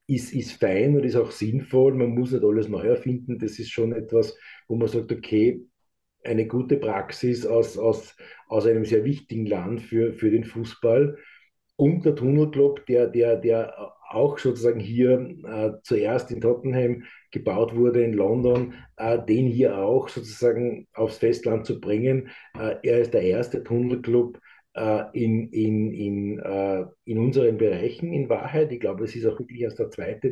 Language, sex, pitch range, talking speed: German, male, 110-130 Hz, 165 wpm